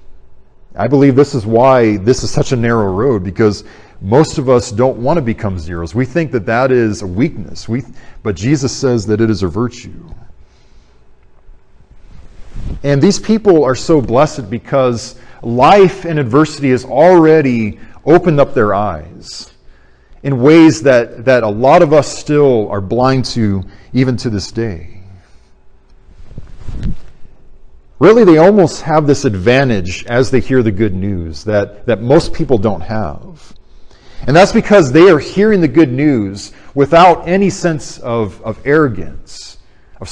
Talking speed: 155 wpm